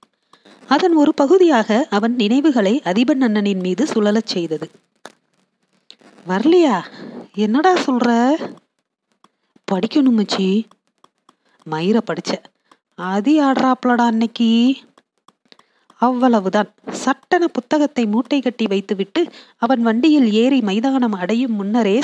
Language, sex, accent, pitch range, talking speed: Tamil, female, native, 210-285 Hz, 75 wpm